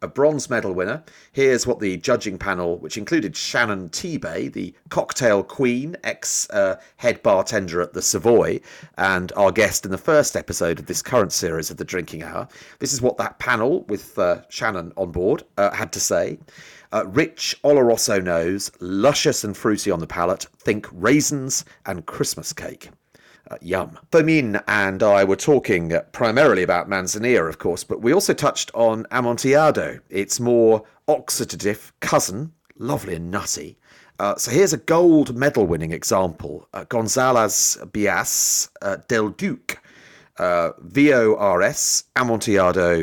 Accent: British